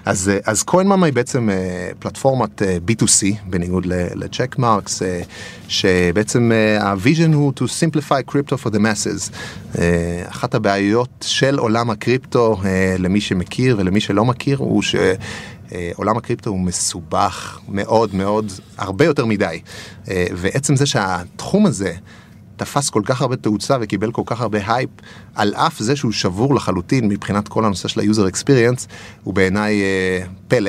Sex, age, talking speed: male, 30-49, 135 wpm